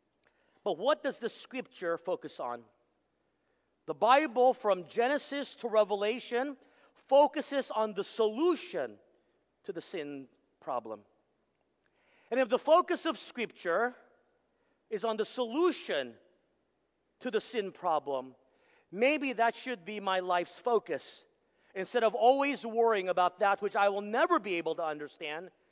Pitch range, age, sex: 155-230 Hz, 40-59, male